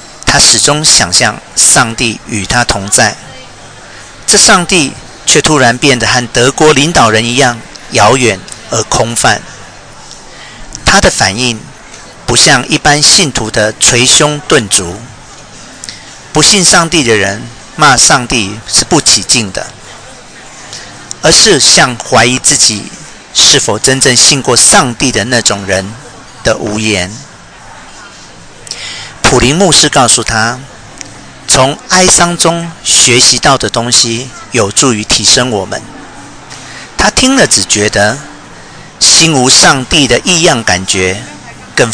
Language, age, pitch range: Chinese, 50-69, 110-150 Hz